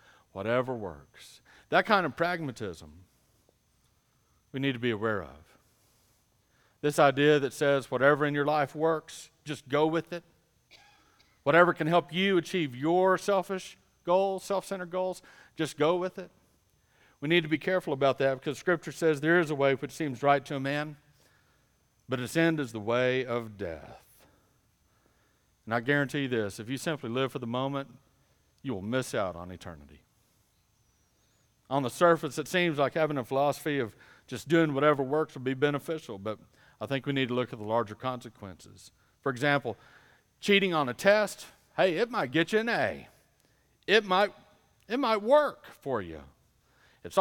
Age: 50-69